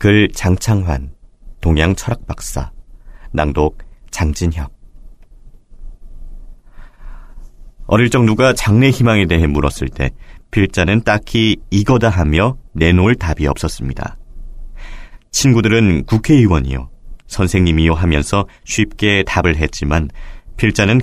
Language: Korean